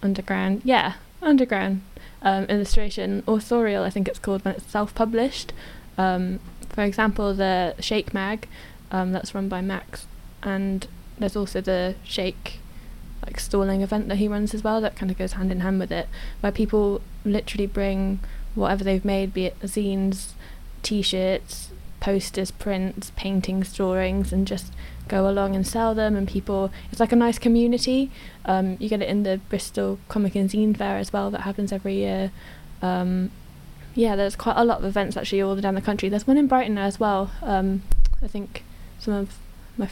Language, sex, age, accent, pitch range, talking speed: English, female, 10-29, British, 195-220 Hz, 175 wpm